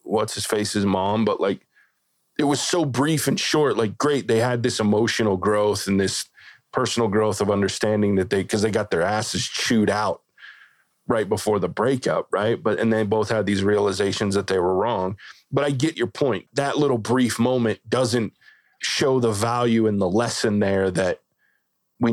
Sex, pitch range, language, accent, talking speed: male, 105-125 Hz, English, American, 190 wpm